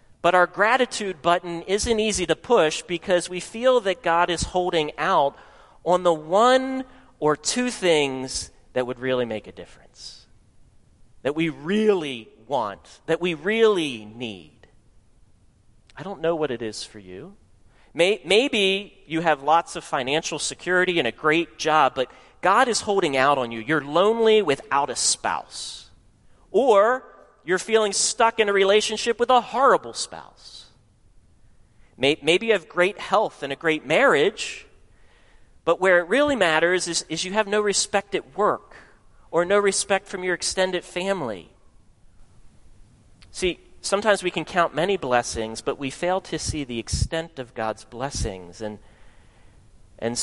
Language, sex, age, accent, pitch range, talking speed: English, male, 40-59, American, 120-195 Hz, 150 wpm